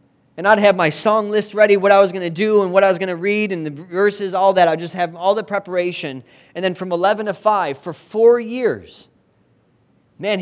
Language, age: English, 40-59